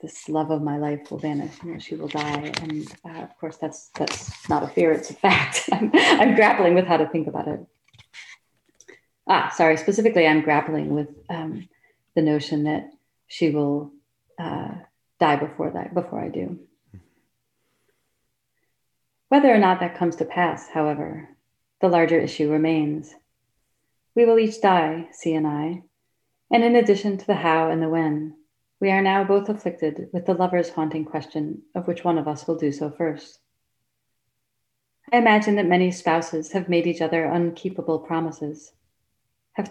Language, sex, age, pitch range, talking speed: English, female, 40-59, 150-180 Hz, 165 wpm